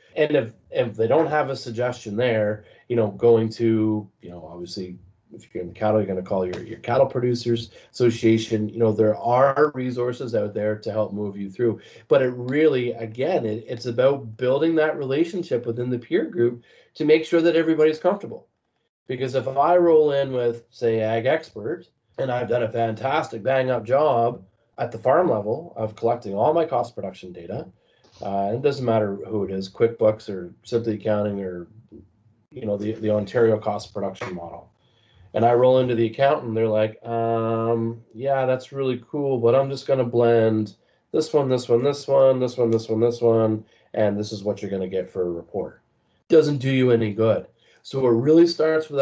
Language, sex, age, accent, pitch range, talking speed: English, male, 30-49, American, 110-130 Hz, 195 wpm